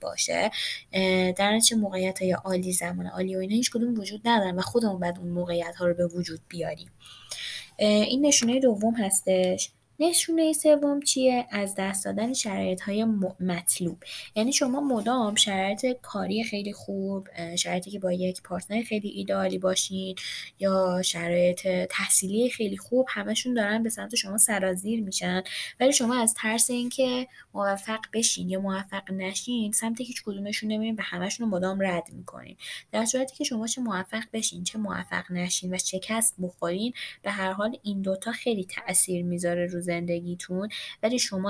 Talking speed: 155 wpm